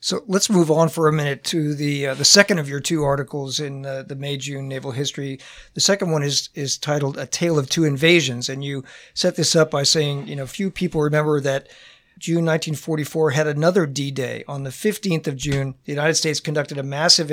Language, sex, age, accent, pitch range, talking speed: English, male, 50-69, American, 140-165 Hz, 215 wpm